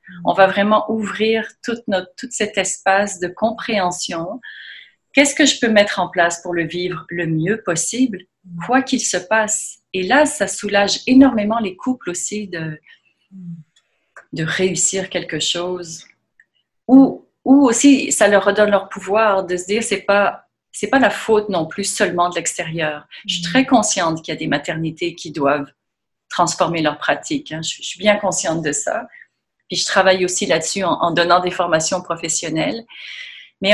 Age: 40-59